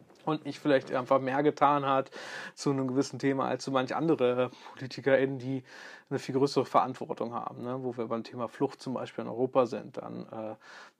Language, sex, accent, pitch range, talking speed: German, male, German, 130-150 Hz, 185 wpm